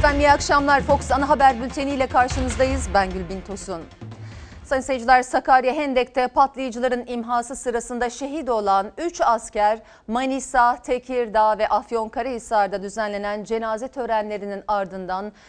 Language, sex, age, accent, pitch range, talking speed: Turkish, female, 40-59, native, 220-320 Hz, 110 wpm